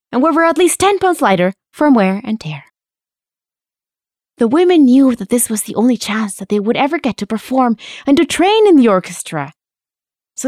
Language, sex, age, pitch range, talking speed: English, female, 20-39, 180-285 Hz, 200 wpm